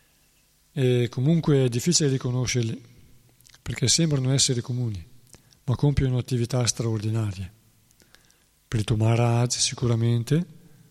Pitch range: 115-130 Hz